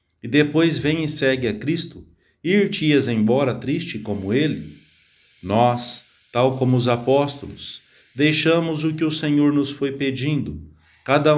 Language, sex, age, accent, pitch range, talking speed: English, male, 40-59, Brazilian, 115-145 Hz, 140 wpm